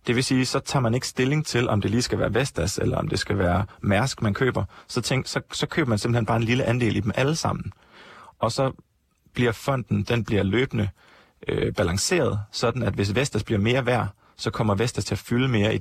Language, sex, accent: Danish, male, native